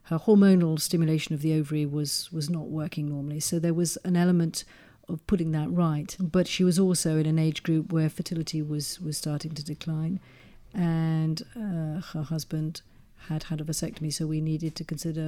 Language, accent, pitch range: English, British, 150-170 Hz